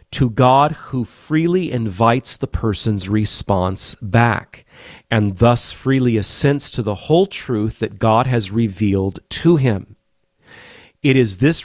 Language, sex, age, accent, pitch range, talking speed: English, male, 40-59, American, 110-135 Hz, 135 wpm